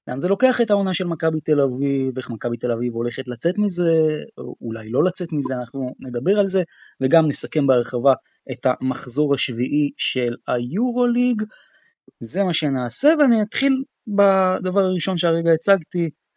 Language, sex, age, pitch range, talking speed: Hebrew, male, 20-39, 135-195 Hz, 150 wpm